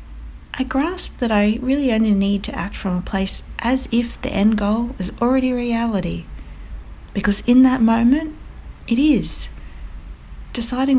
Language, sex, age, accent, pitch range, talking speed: English, female, 40-59, Australian, 155-245 Hz, 145 wpm